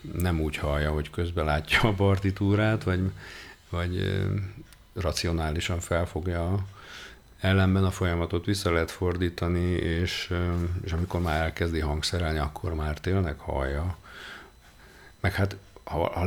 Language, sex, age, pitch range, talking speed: Hungarian, male, 50-69, 80-95 Hz, 120 wpm